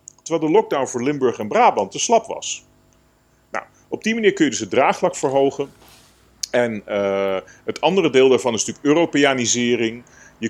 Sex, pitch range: male, 100-165 Hz